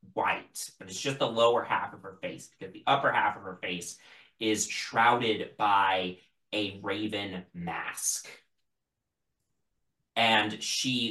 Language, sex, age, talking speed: English, male, 30-49, 135 wpm